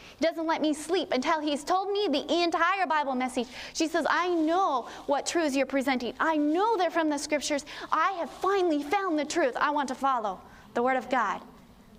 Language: English